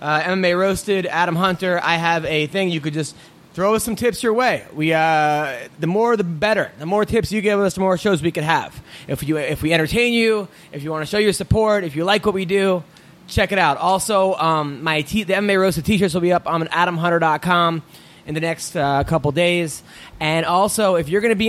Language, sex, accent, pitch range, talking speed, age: English, male, American, 155-190 Hz, 235 wpm, 20-39